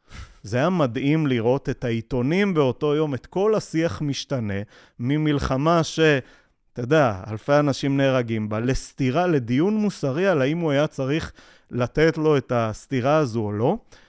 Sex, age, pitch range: male, 30-49, 120-155 Hz